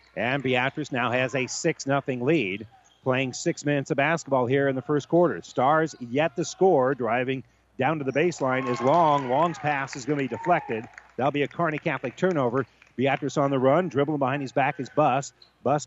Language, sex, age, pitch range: English, male, 50-69, 140-185 Hz